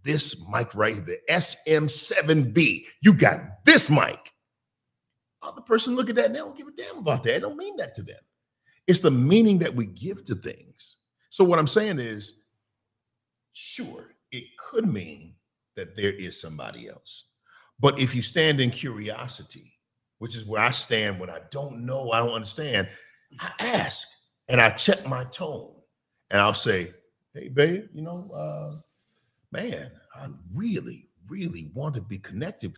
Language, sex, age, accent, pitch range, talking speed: English, male, 50-69, American, 110-175 Hz, 170 wpm